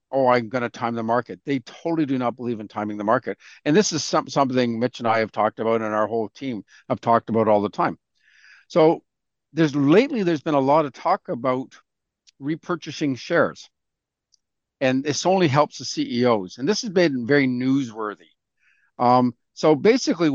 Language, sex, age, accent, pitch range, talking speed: English, male, 50-69, American, 130-165 Hz, 185 wpm